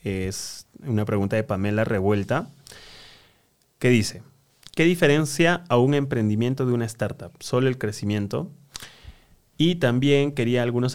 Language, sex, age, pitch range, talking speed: Spanish, male, 20-39, 105-140 Hz, 125 wpm